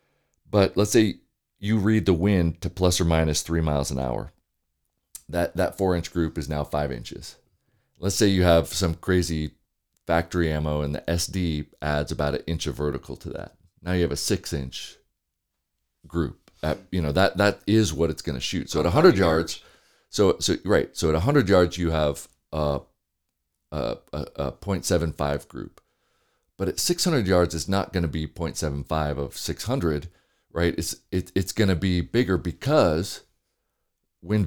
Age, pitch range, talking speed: 40-59, 75-95 Hz, 180 wpm